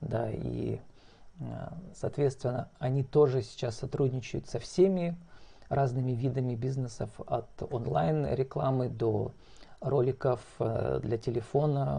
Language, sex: Russian, male